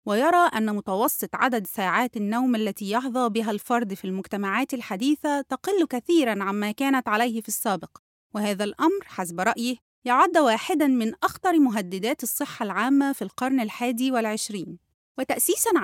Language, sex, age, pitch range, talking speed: English, female, 30-49, 215-295 Hz, 135 wpm